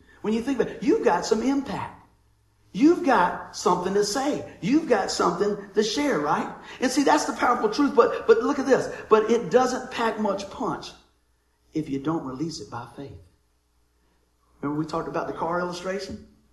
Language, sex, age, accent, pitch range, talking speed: English, male, 50-69, American, 165-230 Hz, 185 wpm